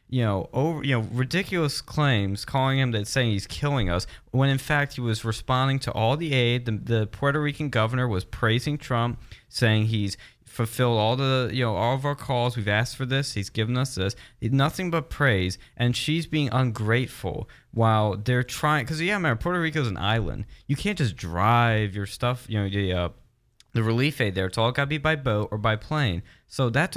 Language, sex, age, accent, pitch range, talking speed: English, male, 20-39, American, 110-140 Hz, 210 wpm